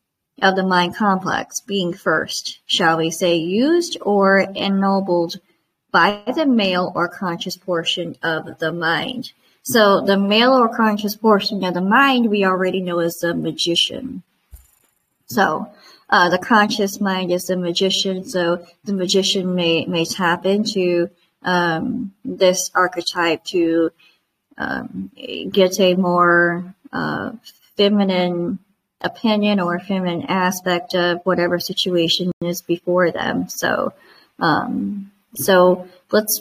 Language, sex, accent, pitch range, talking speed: English, male, American, 175-205 Hz, 125 wpm